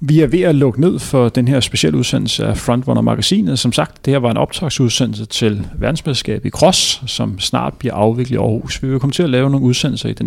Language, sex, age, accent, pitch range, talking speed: Danish, male, 40-59, native, 120-150 Hz, 240 wpm